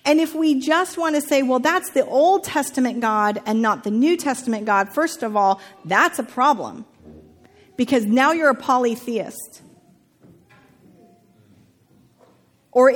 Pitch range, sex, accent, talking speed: 220-280 Hz, female, American, 145 wpm